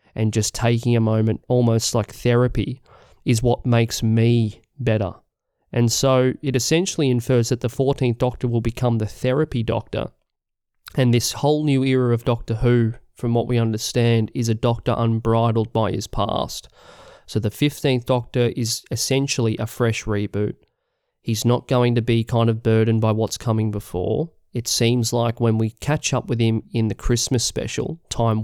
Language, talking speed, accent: English, 170 wpm, Australian